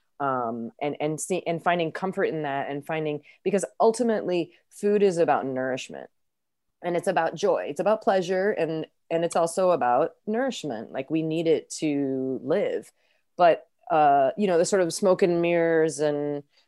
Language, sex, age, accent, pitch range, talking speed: English, female, 30-49, American, 150-195 Hz, 170 wpm